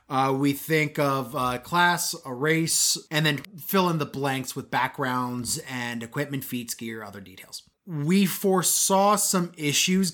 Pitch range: 135-165 Hz